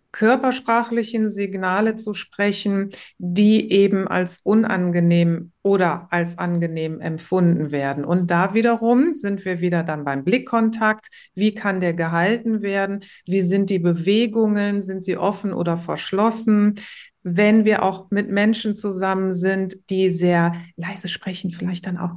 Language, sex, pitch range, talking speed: German, female, 175-220 Hz, 135 wpm